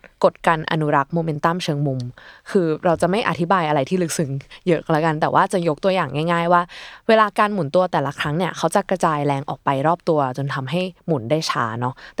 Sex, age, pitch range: female, 20-39, 145-185 Hz